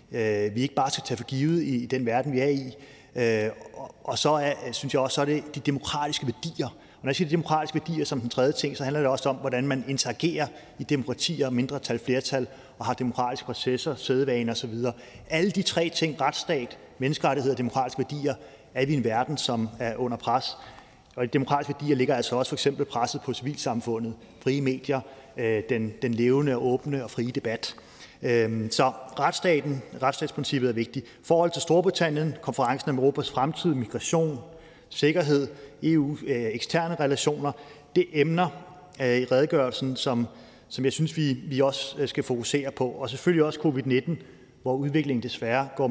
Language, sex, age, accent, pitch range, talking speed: Danish, male, 30-49, native, 125-145 Hz, 175 wpm